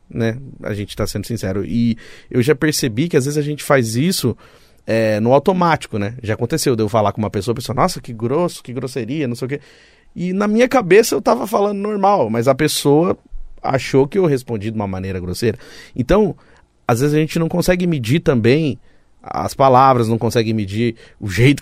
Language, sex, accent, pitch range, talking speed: Portuguese, male, Brazilian, 115-155 Hz, 210 wpm